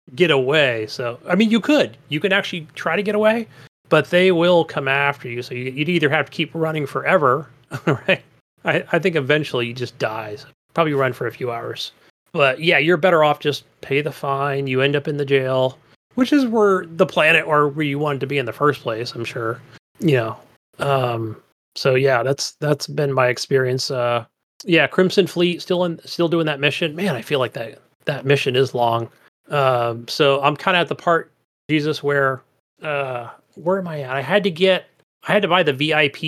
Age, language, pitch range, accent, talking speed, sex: 30-49, English, 135-170 Hz, American, 215 wpm, male